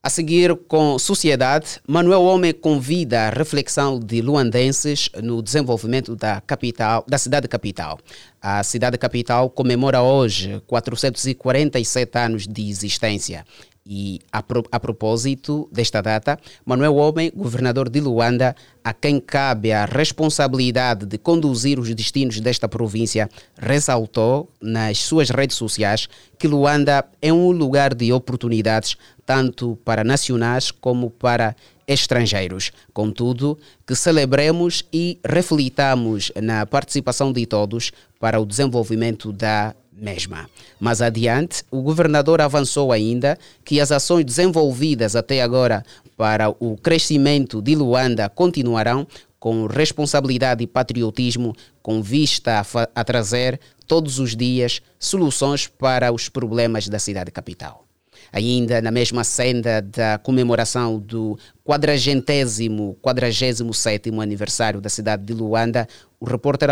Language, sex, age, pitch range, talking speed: Portuguese, male, 30-49, 110-140 Hz, 120 wpm